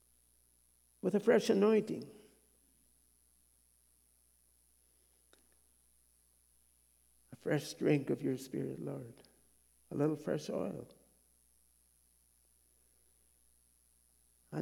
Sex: male